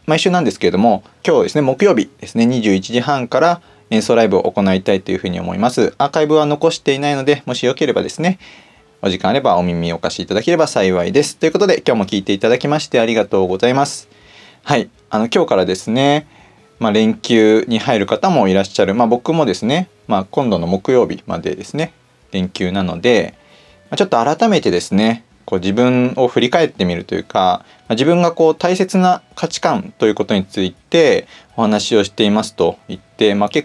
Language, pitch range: Japanese, 100-150 Hz